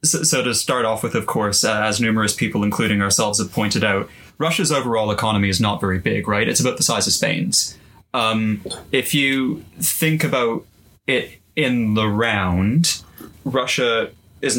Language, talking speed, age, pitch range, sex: English, 175 wpm, 20-39, 105-120 Hz, male